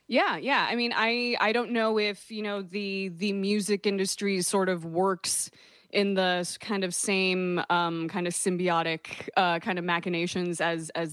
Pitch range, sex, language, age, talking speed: 175-210 Hz, female, English, 20-39, 180 wpm